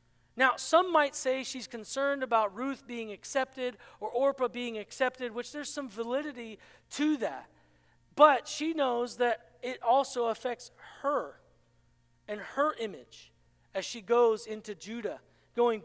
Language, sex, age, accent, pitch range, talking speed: English, male, 40-59, American, 220-275 Hz, 140 wpm